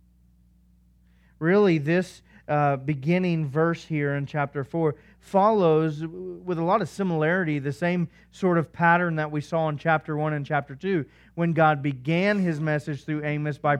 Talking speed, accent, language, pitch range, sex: 160 wpm, American, English, 145-185 Hz, male